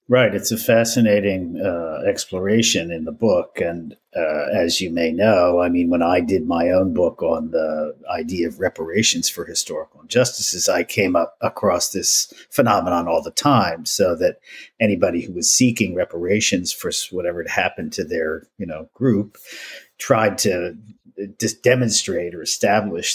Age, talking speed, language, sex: 50-69, 160 wpm, English, male